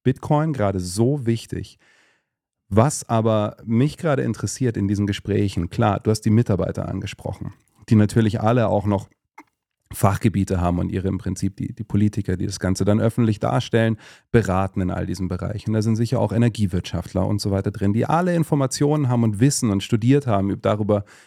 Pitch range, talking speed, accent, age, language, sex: 95-115 Hz, 175 wpm, German, 40-59, German, male